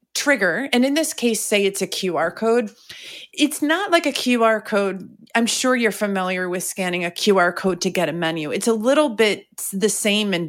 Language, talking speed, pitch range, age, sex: English, 205 wpm, 185-235 Hz, 30-49, female